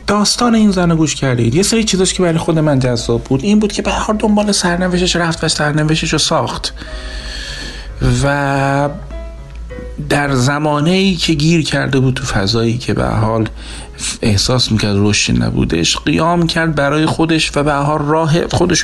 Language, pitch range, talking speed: Persian, 115-170 Hz, 160 wpm